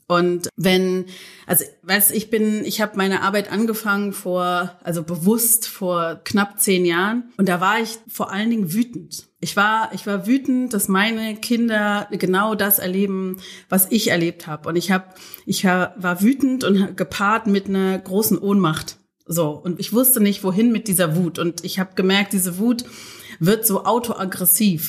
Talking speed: 170 wpm